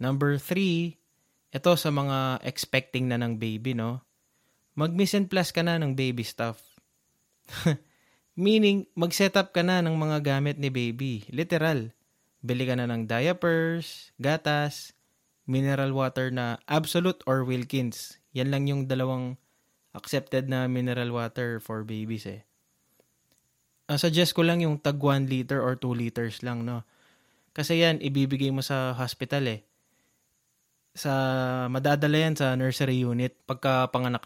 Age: 20-39